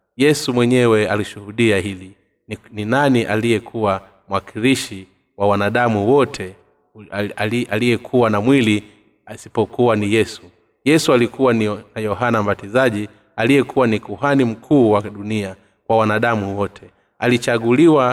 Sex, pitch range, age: male, 105-125 Hz, 30-49